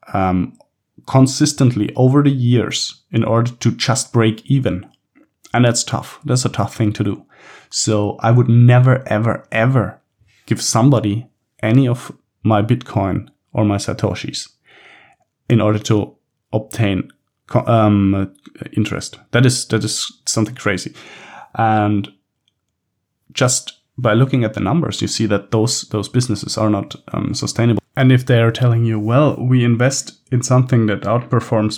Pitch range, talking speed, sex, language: 105-125 Hz, 145 wpm, male, English